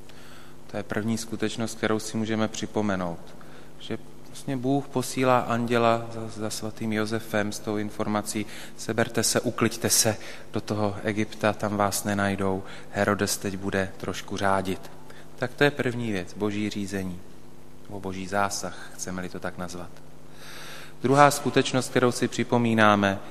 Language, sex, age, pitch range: Slovak, male, 30-49, 95-115 Hz